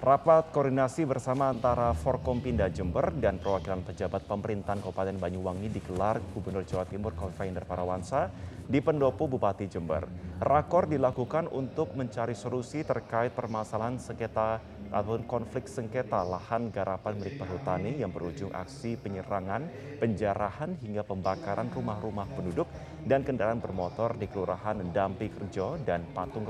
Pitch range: 95-125 Hz